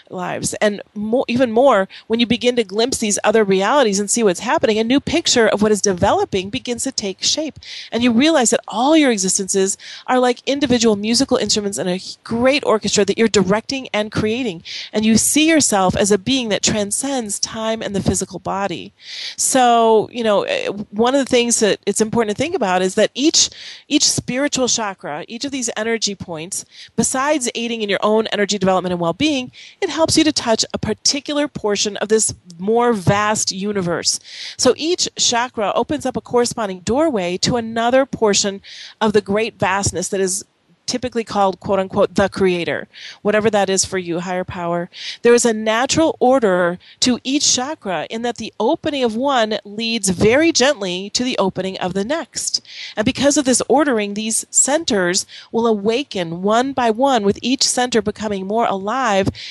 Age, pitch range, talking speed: 40-59, 200-250 Hz, 180 wpm